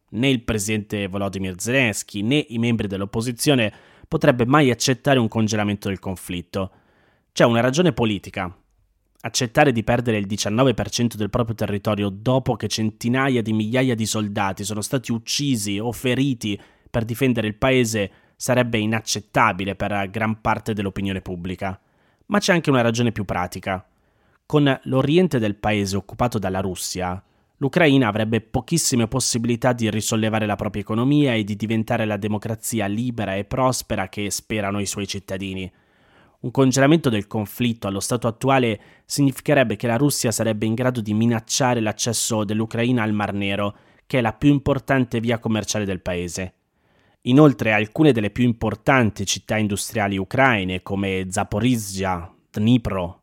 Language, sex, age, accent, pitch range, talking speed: Italian, male, 20-39, native, 100-125 Hz, 145 wpm